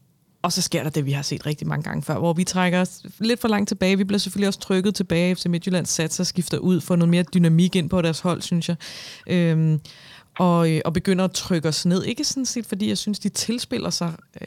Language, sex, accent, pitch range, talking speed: Danish, female, native, 170-195 Hz, 245 wpm